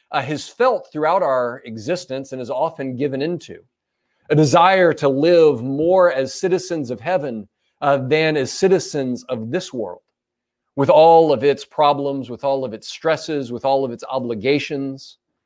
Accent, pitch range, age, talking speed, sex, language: American, 135-180 Hz, 40-59, 165 wpm, male, English